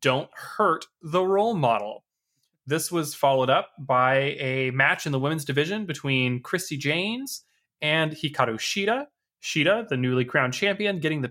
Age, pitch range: 20-39, 130-175 Hz